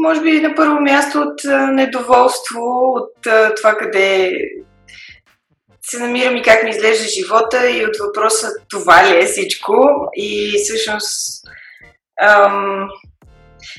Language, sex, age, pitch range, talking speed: Bulgarian, female, 20-39, 205-255 Hz, 120 wpm